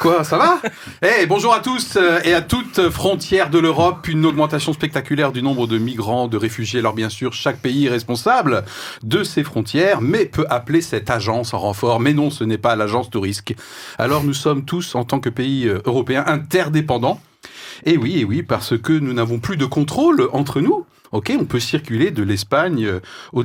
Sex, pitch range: male, 115-155 Hz